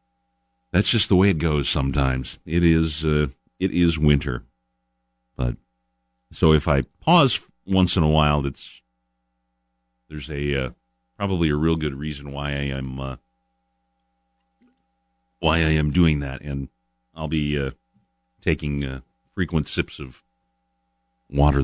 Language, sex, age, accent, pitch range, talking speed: English, male, 40-59, American, 70-90 Hz, 140 wpm